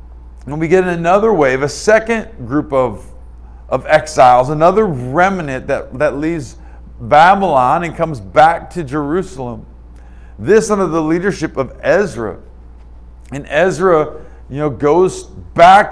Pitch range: 130-180 Hz